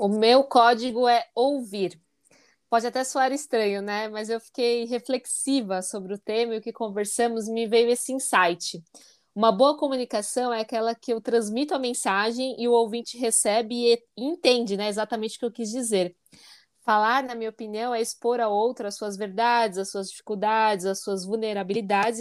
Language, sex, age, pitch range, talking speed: Portuguese, female, 20-39, 205-245 Hz, 175 wpm